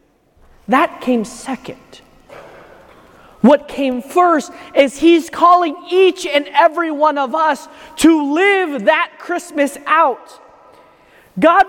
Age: 30-49